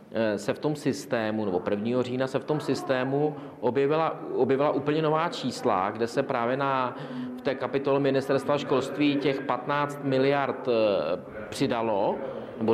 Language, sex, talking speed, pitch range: Czech, male, 140 wpm, 125-145 Hz